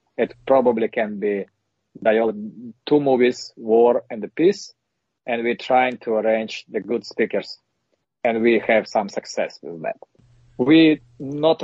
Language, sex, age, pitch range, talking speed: English, male, 40-59, 115-145 Hz, 140 wpm